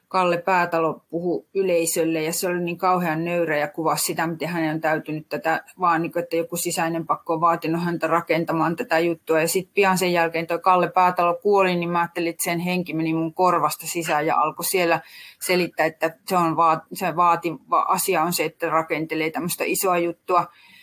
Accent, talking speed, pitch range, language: native, 190 wpm, 165-190 Hz, Finnish